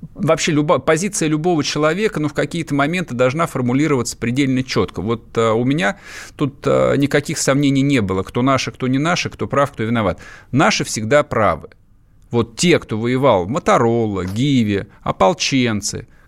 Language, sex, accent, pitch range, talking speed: Russian, male, native, 115-155 Hz, 155 wpm